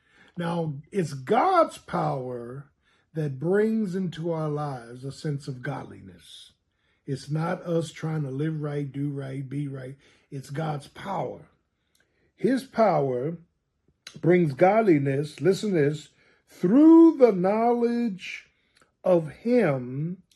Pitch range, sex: 140-185 Hz, male